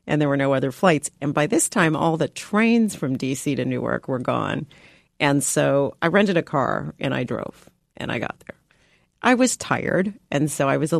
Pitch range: 150-200 Hz